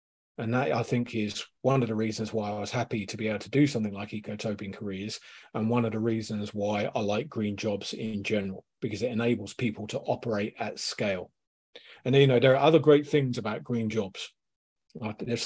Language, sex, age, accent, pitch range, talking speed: English, male, 40-59, British, 110-140 Hz, 210 wpm